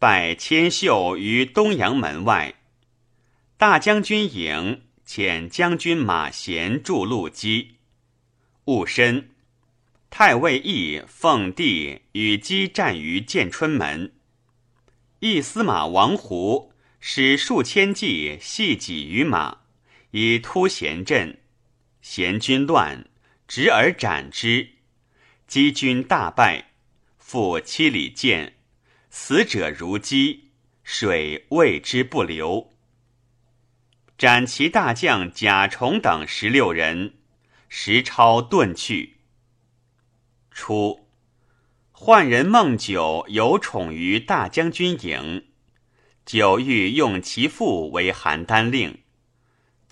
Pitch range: 115-130 Hz